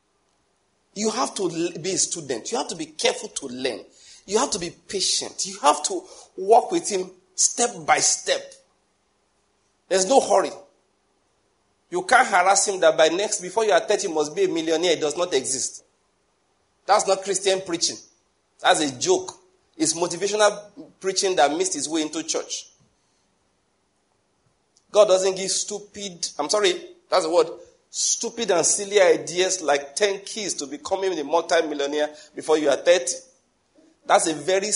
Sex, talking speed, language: male, 160 wpm, English